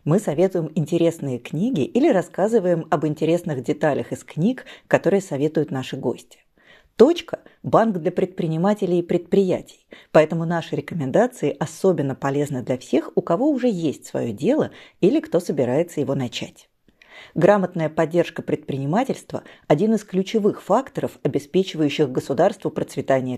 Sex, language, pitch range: female, Russian, 150-195 Hz